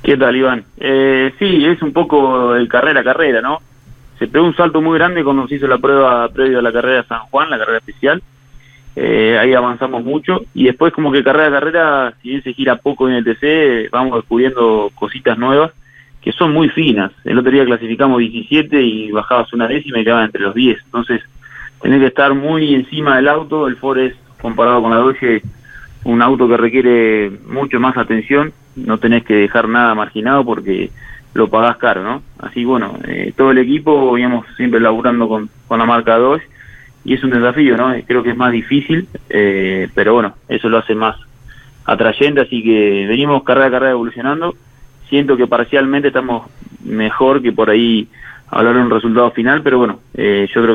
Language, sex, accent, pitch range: Spanish, male, Argentinian, 115-135 Hz